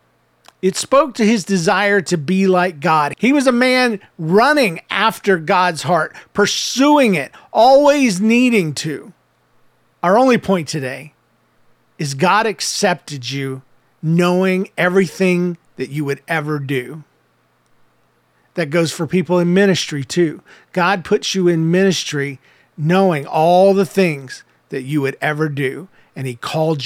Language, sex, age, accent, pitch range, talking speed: English, male, 40-59, American, 145-200 Hz, 135 wpm